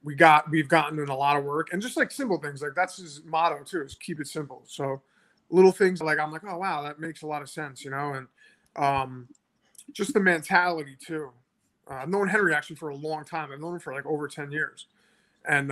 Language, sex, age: English, male, 20-39